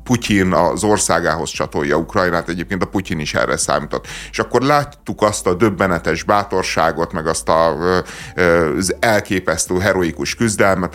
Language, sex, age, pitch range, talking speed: Hungarian, male, 30-49, 90-115 Hz, 135 wpm